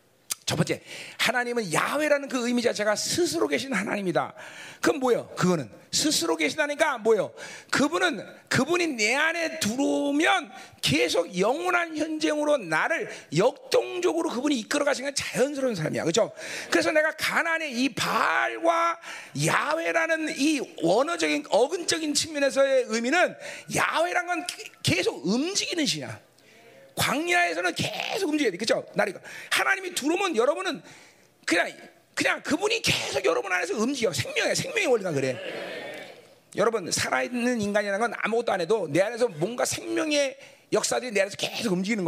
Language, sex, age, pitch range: Korean, male, 40-59, 240-340 Hz